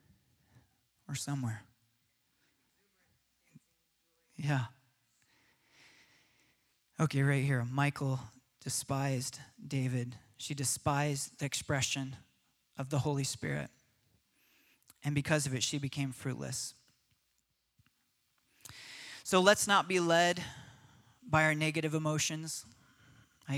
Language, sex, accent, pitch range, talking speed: English, male, American, 130-150 Hz, 85 wpm